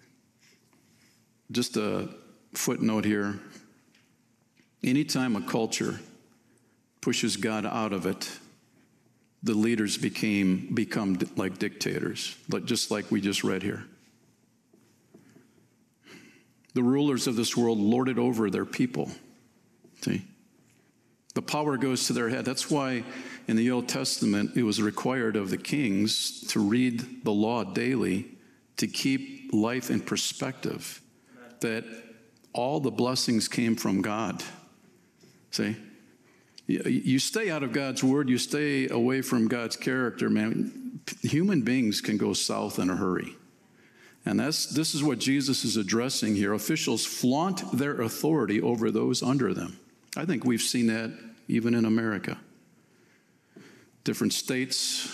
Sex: male